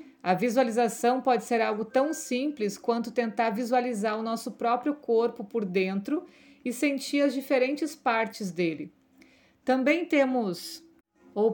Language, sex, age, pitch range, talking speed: Portuguese, female, 50-69, 210-260 Hz, 130 wpm